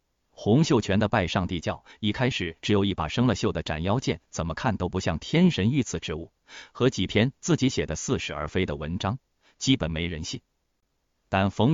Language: Chinese